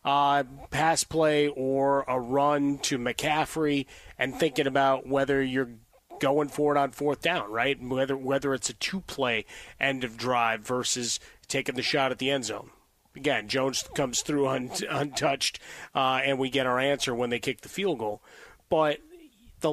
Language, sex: English, male